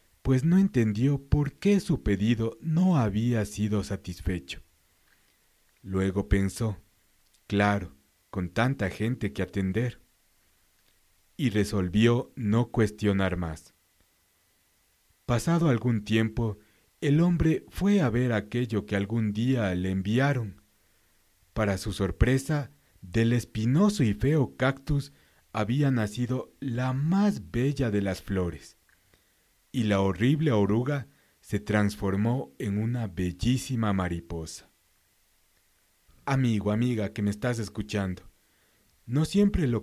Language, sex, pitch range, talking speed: Spanish, male, 95-125 Hz, 110 wpm